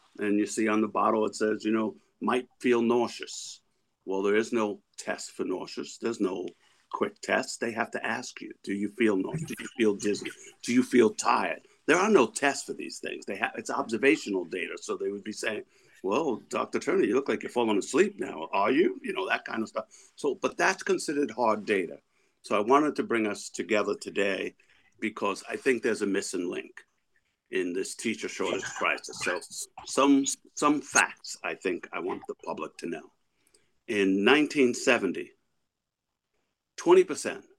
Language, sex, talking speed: English, male, 185 wpm